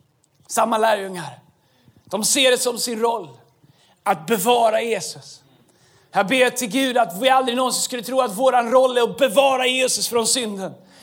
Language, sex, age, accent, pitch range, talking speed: Swedish, male, 40-59, native, 245-315 Hz, 165 wpm